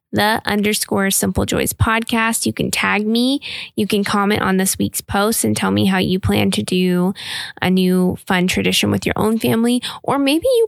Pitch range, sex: 180-235 Hz, female